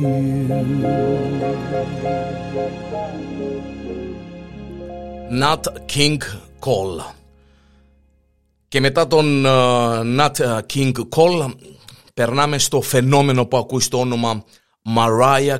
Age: 50-69